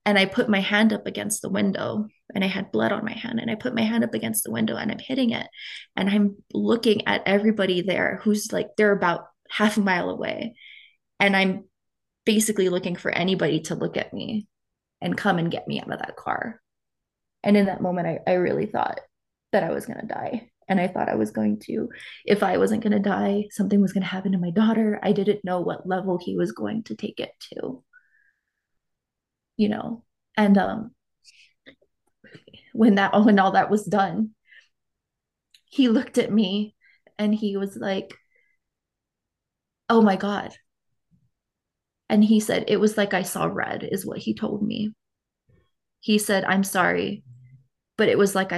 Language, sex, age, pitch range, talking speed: English, female, 20-39, 185-220 Hz, 190 wpm